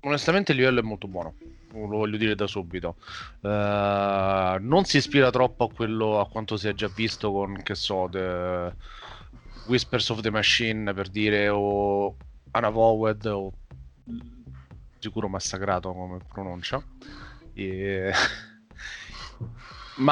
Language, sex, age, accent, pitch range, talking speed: Italian, male, 30-49, native, 95-115 Hz, 130 wpm